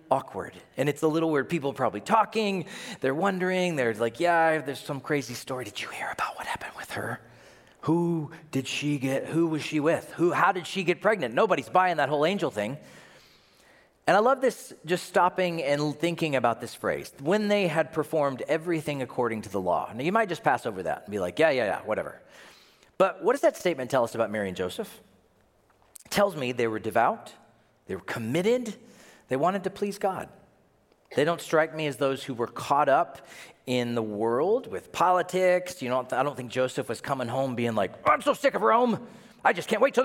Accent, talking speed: American, 215 wpm